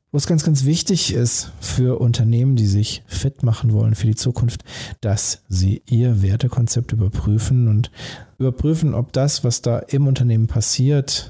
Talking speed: 155 wpm